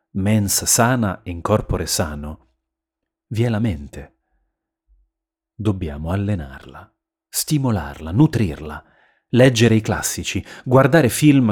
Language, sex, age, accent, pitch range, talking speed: Italian, male, 30-49, native, 90-125 Hz, 95 wpm